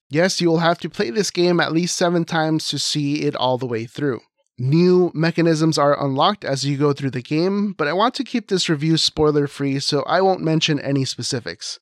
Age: 30-49